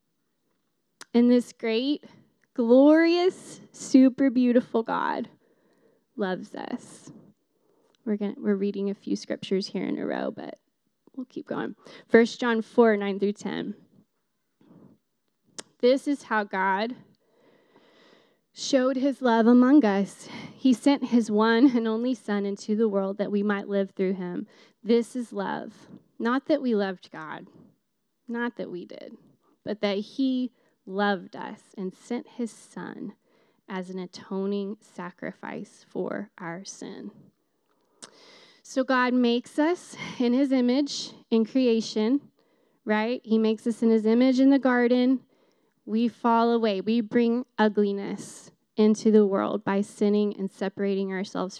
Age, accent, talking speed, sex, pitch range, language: 10-29, American, 135 wpm, female, 205-250 Hz, English